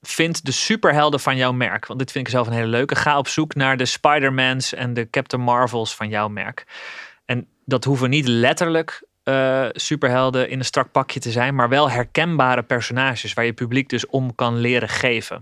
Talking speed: 200 wpm